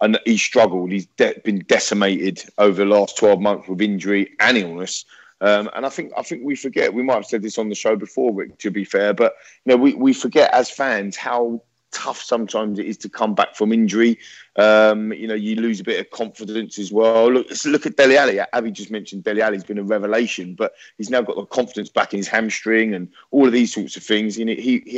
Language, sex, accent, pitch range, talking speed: English, male, British, 100-120 Hz, 240 wpm